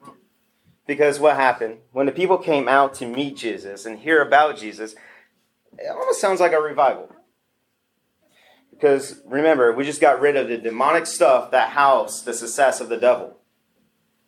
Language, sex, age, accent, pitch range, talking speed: English, male, 30-49, American, 125-180 Hz, 160 wpm